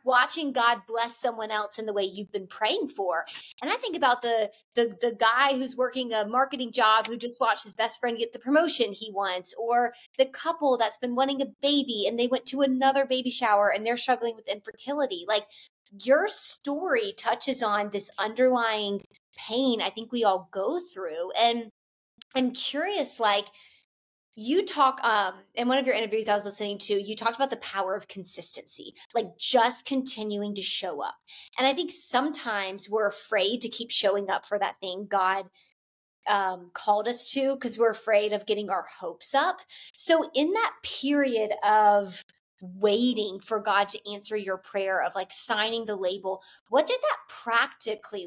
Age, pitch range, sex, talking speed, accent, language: 20-39, 205-265 Hz, female, 180 wpm, American, English